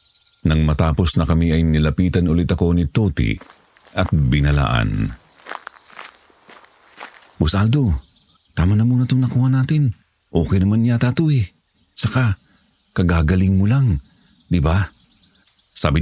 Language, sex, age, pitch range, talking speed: Filipino, male, 50-69, 85-125 Hz, 110 wpm